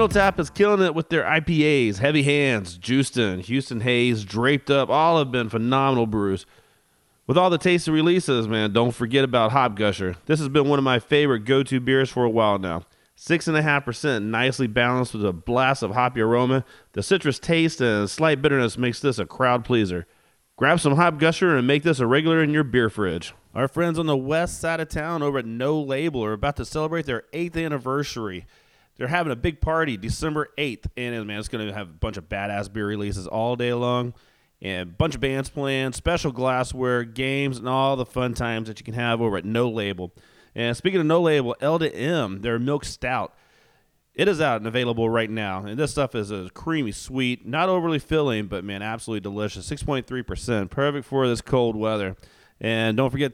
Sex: male